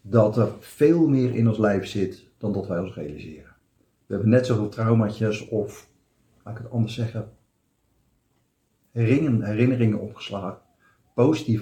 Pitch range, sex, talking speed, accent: 105-125 Hz, male, 140 wpm, Dutch